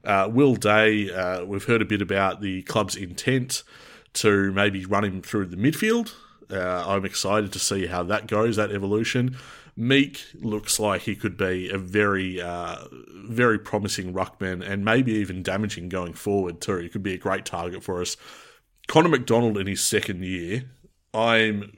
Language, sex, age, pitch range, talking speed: English, male, 30-49, 95-115 Hz, 175 wpm